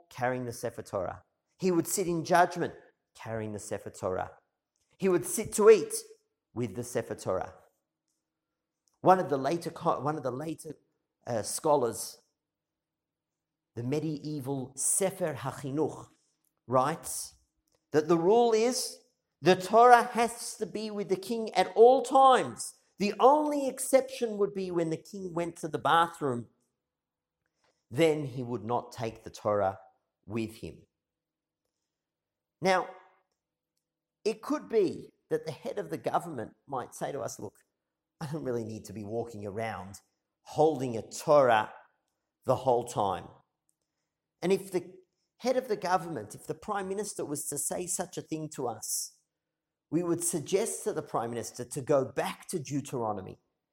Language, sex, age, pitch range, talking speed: English, male, 50-69, 130-195 Hz, 150 wpm